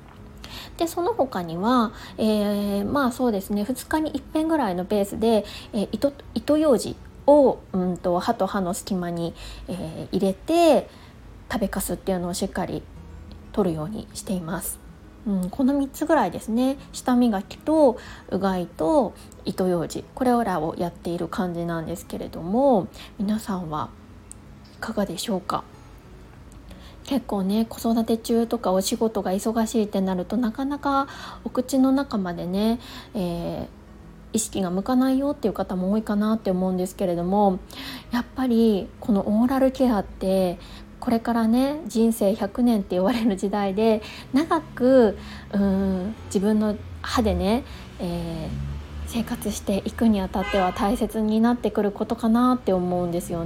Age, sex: 20-39, female